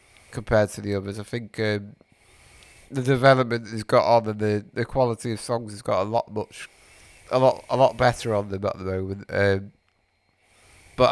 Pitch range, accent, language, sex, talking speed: 100-125 Hz, British, English, male, 190 wpm